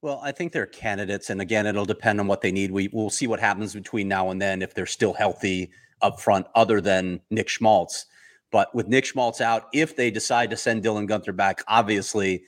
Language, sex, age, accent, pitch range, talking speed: English, male, 30-49, American, 100-120 Hz, 220 wpm